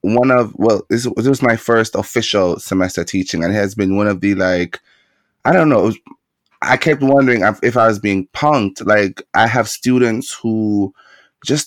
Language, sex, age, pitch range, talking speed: English, male, 20-39, 95-120 Hz, 190 wpm